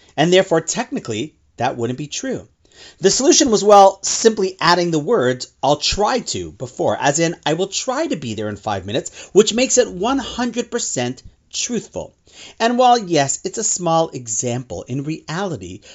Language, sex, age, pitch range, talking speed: English, male, 40-59, 120-195 Hz, 165 wpm